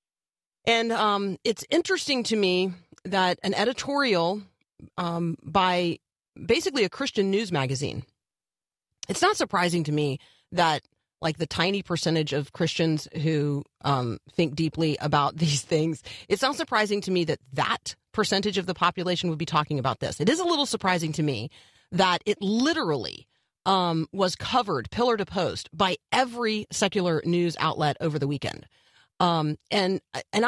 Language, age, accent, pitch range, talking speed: English, 40-59, American, 155-200 Hz, 155 wpm